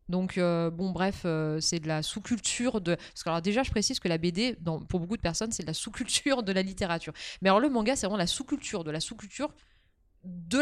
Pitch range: 175-215 Hz